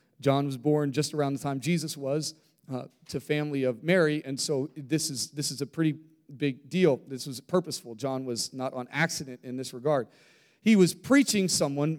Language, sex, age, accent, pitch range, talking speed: English, male, 30-49, American, 145-215 Hz, 195 wpm